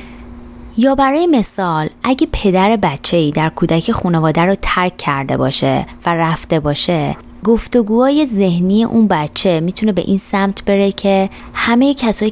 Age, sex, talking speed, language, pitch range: 20-39, female, 135 wpm, Persian, 155-215 Hz